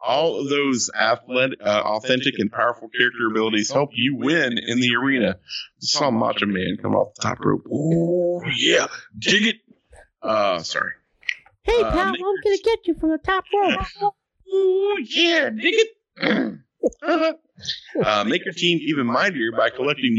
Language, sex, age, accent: English, male, 50-69, American